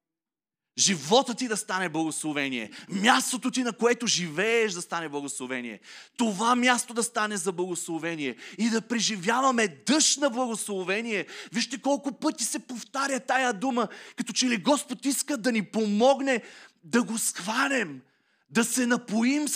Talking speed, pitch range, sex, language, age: 140 wpm, 180-245 Hz, male, Bulgarian, 30-49